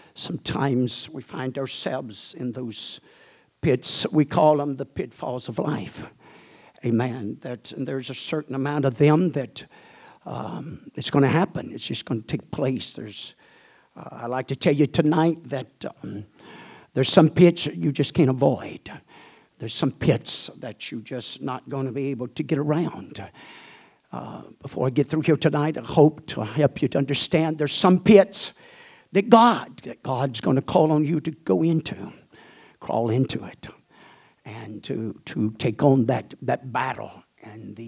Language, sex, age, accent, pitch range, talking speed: English, male, 60-79, American, 130-160 Hz, 170 wpm